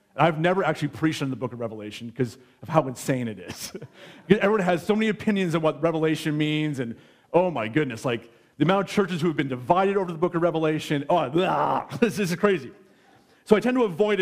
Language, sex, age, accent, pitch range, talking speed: English, male, 40-59, American, 135-170 Hz, 220 wpm